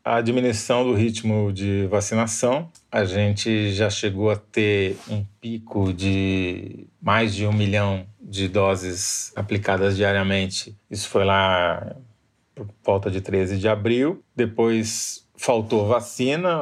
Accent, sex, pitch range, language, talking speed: Brazilian, male, 100-115 Hz, Portuguese, 125 wpm